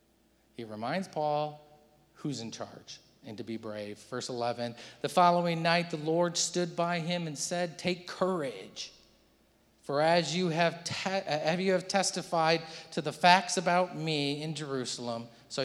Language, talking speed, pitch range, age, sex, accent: English, 155 wpm, 130-180 Hz, 40-59, male, American